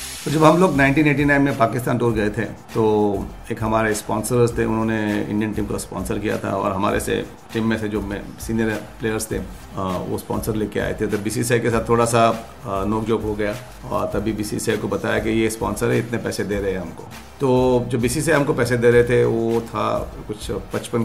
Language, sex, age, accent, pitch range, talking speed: Hindi, male, 40-59, native, 105-120 Hz, 215 wpm